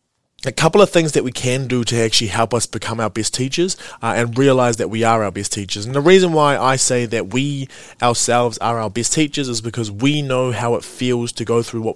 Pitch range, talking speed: 110-135 Hz, 245 wpm